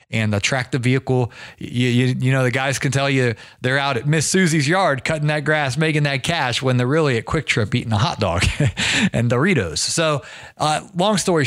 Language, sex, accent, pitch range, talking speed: English, male, American, 110-150 Hz, 225 wpm